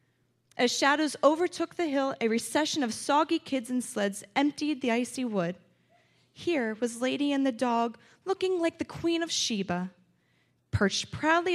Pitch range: 205-280 Hz